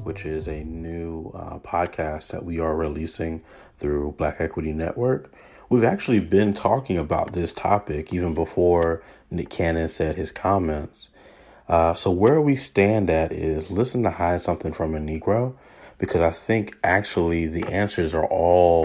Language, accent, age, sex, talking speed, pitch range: English, American, 30-49, male, 160 wpm, 80-100 Hz